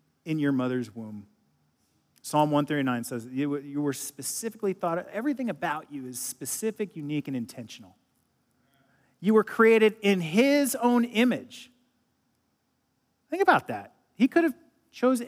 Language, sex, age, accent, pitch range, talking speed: English, male, 40-59, American, 140-225 Hz, 130 wpm